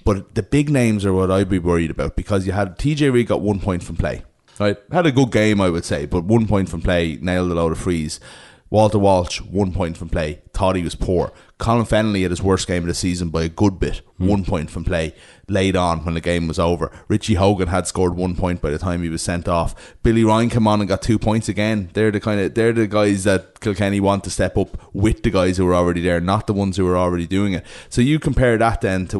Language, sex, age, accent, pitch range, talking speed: English, male, 30-49, Irish, 90-105 Hz, 265 wpm